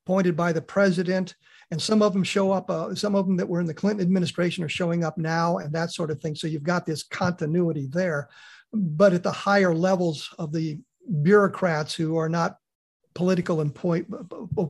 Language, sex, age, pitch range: English, male, 50-69, 160-190 Hz